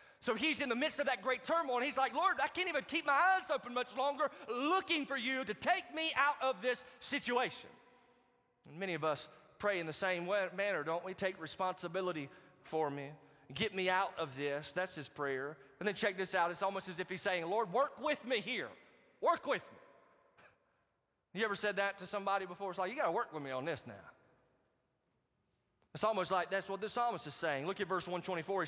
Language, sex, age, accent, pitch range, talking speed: English, male, 30-49, American, 190-255 Hz, 225 wpm